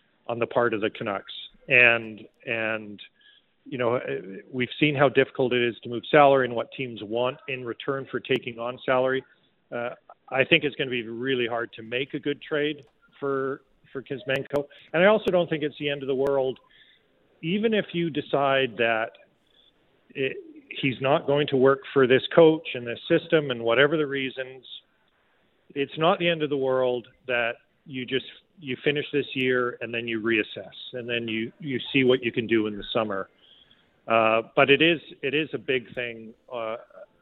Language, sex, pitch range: English, male, 115-145 Hz